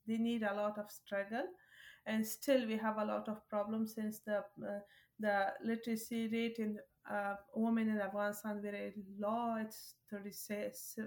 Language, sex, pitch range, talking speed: English, female, 205-225 Hz, 155 wpm